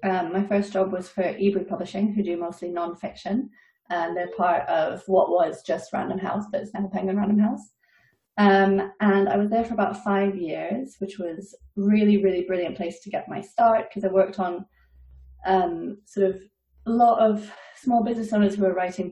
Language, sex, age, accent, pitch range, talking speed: English, female, 30-49, British, 185-215 Hz, 195 wpm